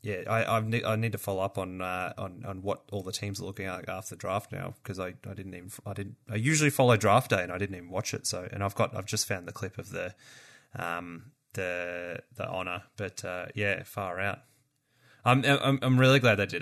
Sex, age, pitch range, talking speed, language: male, 20-39, 95-120 Hz, 245 wpm, English